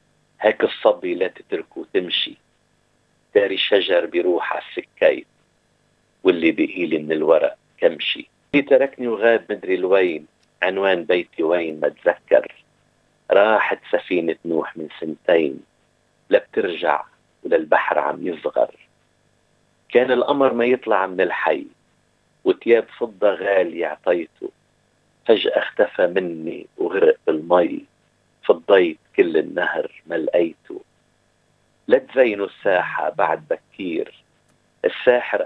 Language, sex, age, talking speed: Arabic, male, 50-69, 100 wpm